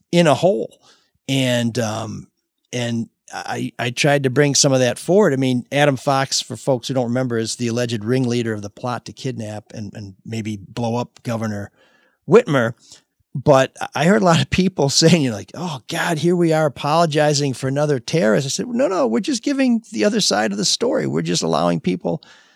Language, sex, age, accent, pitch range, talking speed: English, male, 40-59, American, 115-160 Hz, 205 wpm